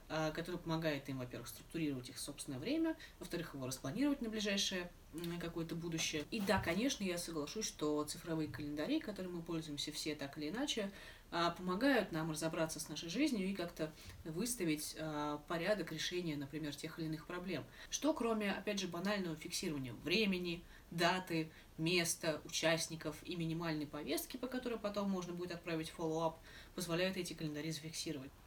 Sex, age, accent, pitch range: female, 20-39, native, 150-190 Hz